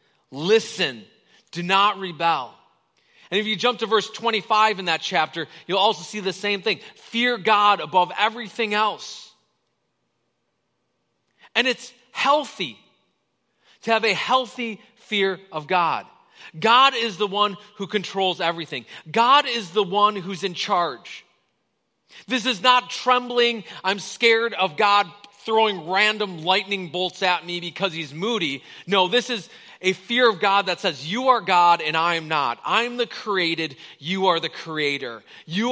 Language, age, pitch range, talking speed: English, 30-49, 175-225 Hz, 155 wpm